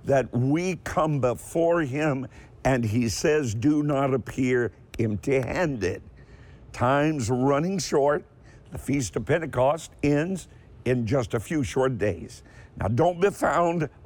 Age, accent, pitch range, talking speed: 50-69, American, 115-150 Hz, 130 wpm